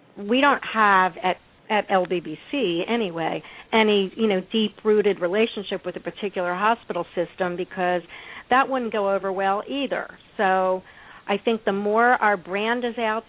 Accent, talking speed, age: American, 150 wpm, 50-69